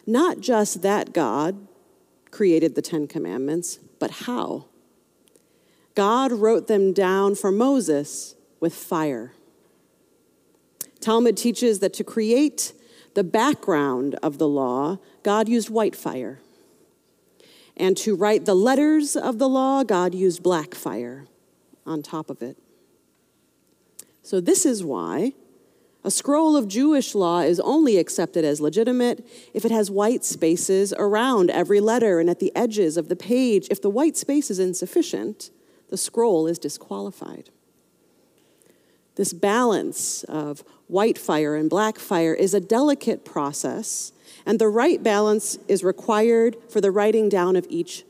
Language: English